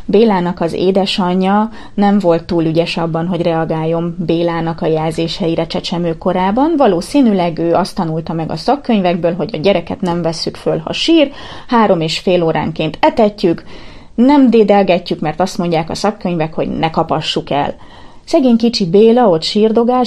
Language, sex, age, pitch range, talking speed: Hungarian, female, 30-49, 175-235 Hz, 155 wpm